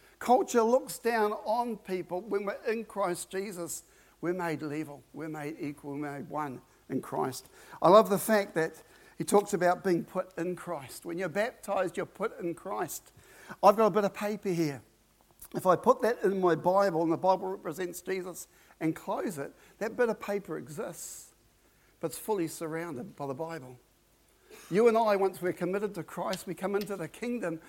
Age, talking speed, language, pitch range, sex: 60-79, 190 wpm, English, 165-225 Hz, male